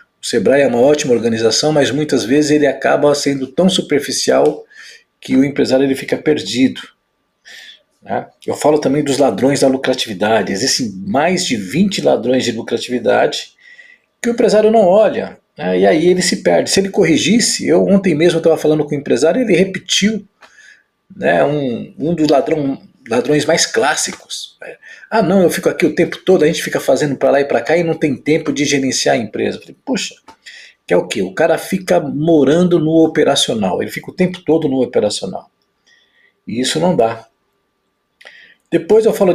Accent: Brazilian